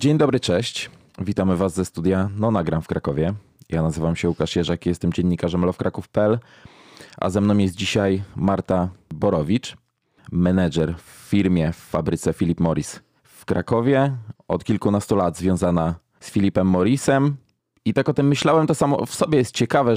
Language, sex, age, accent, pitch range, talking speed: Polish, male, 20-39, native, 95-120 Hz, 155 wpm